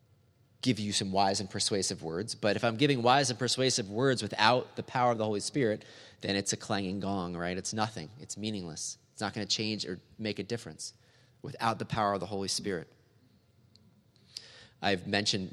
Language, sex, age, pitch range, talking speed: English, male, 30-49, 100-125 Hz, 195 wpm